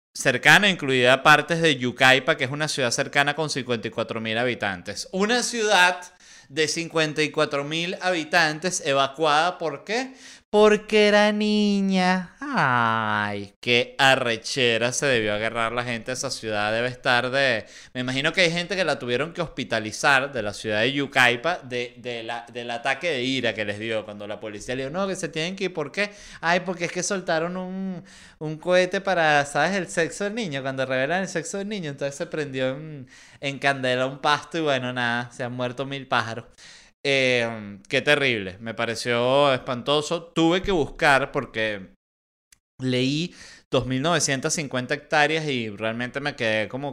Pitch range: 120-160 Hz